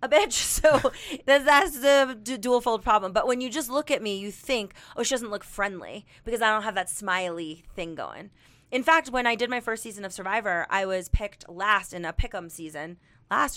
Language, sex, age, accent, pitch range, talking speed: English, female, 30-49, American, 185-240 Hz, 220 wpm